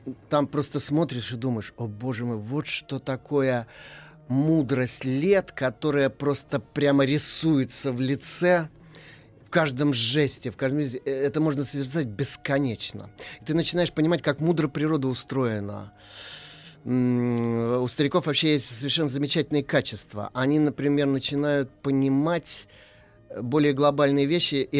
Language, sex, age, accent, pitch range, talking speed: Russian, male, 30-49, native, 125-150 Hz, 125 wpm